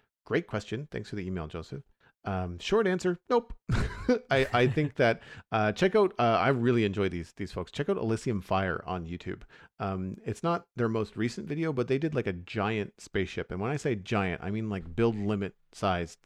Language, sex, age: English, male, 40-59